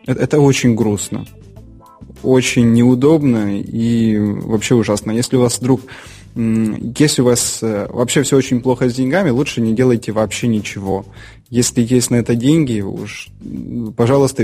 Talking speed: 135 wpm